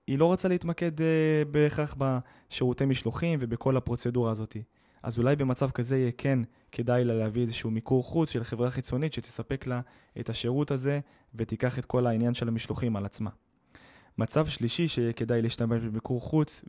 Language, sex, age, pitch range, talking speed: Hebrew, male, 20-39, 115-140 Hz, 160 wpm